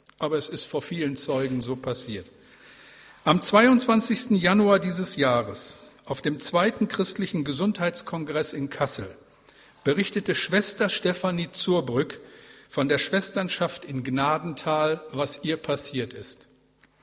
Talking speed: 115 wpm